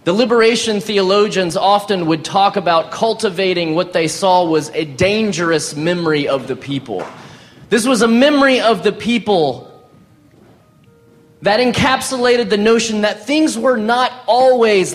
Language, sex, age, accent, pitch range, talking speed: English, male, 30-49, American, 145-210 Hz, 135 wpm